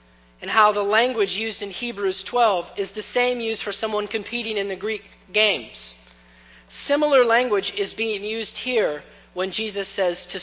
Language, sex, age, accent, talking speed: English, male, 40-59, American, 165 wpm